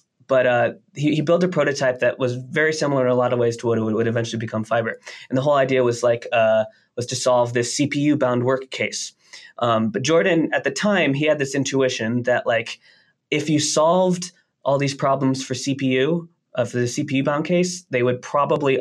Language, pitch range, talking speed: English, 120-140 Hz, 205 wpm